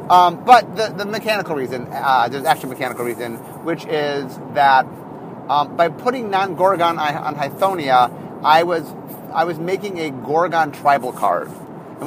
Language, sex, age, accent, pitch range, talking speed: English, male, 30-49, American, 150-215 Hz, 150 wpm